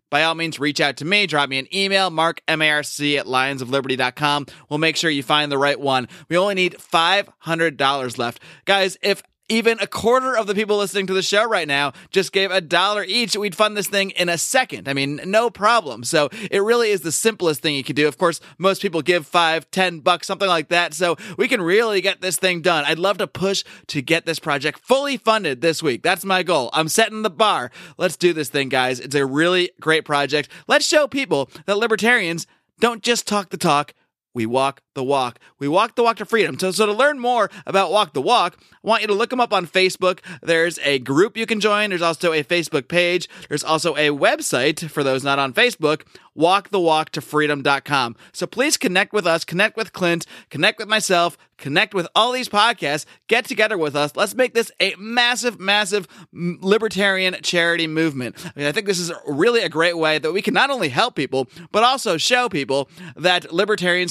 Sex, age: male, 30-49